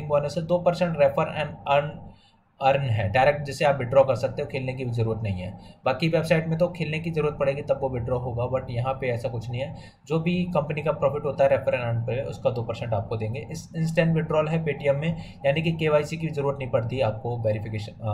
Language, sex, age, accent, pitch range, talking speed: Hindi, male, 20-39, native, 120-150 Hz, 215 wpm